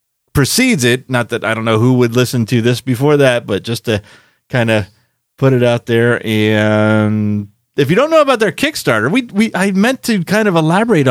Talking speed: 210 wpm